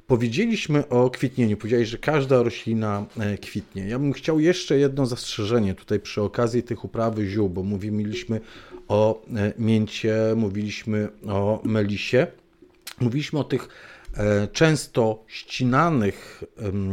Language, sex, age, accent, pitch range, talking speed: Polish, male, 40-59, native, 100-120 Hz, 115 wpm